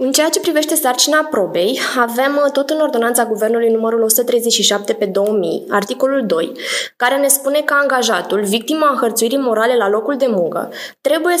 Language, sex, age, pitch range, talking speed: Romanian, female, 20-39, 210-275 Hz, 160 wpm